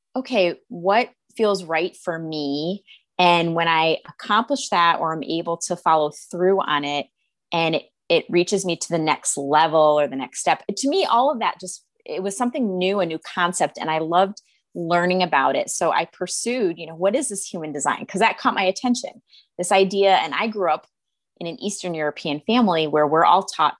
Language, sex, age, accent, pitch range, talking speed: English, female, 20-39, American, 160-205 Hz, 205 wpm